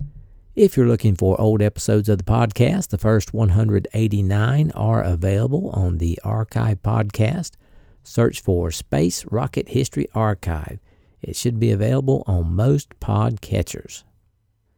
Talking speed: 125 wpm